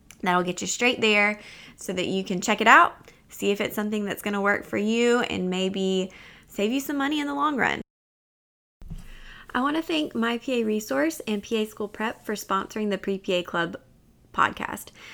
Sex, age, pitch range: female, 20-39, 195-250 Hz